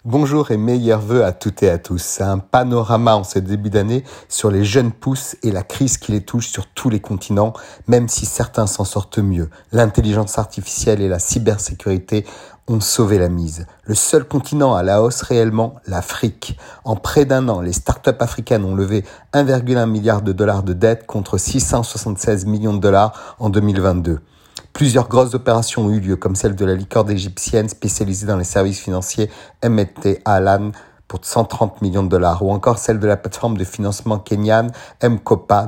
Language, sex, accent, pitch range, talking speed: French, male, French, 95-115 Hz, 185 wpm